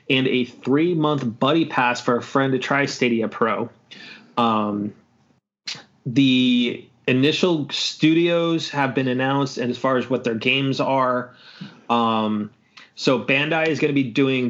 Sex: male